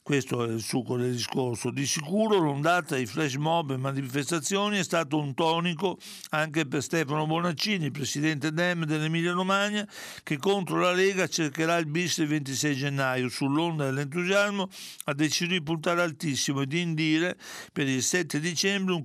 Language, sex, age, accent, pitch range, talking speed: Italian, male, 60-79, native, 140-175 Hz, 160 wpm